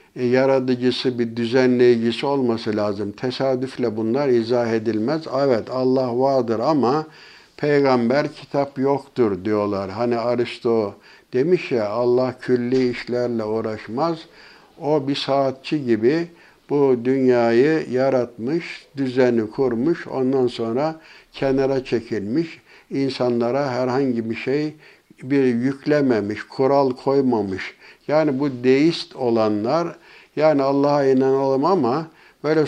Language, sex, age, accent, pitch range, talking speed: Turkish, male, 60-79, native, 120-135 Hz, 100 wpm